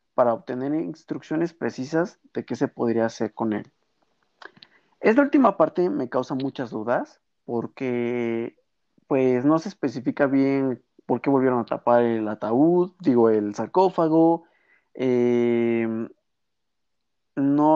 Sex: male